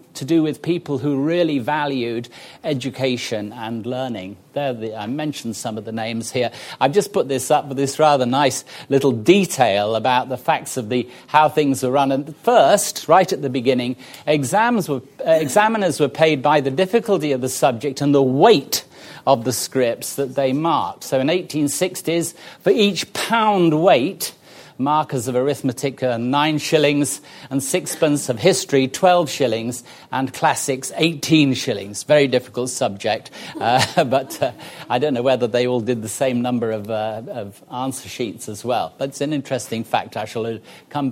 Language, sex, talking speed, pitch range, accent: English, male, 170 wpm, 120-150 Hz, British